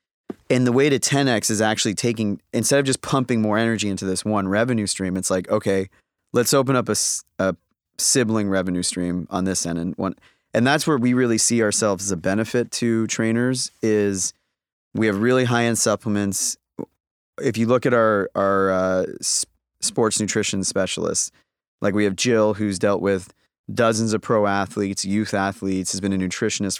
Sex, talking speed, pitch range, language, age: male, 180 wpm, 95-115 Hz, English, 30-49